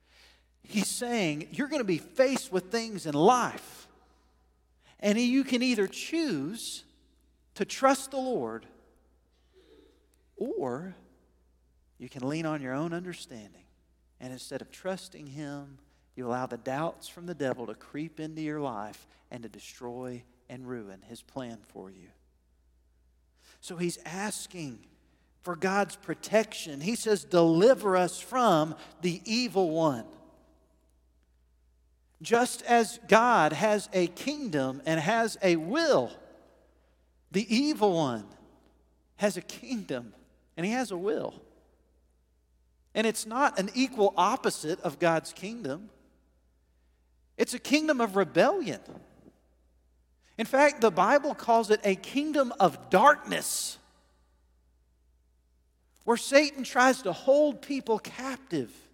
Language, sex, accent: English, male, American